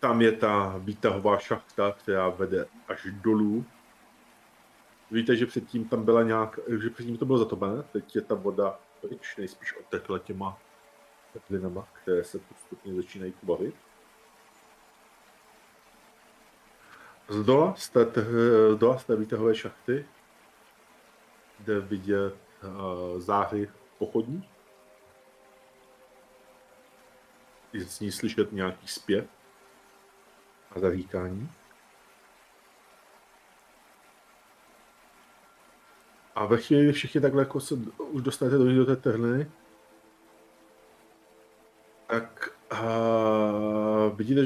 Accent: native